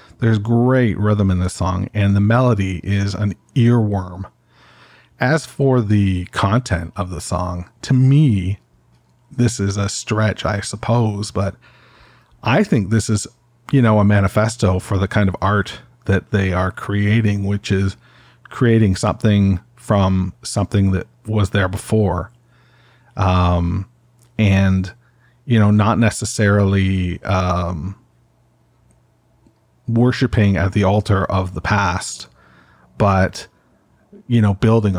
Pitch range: 95-110 Hz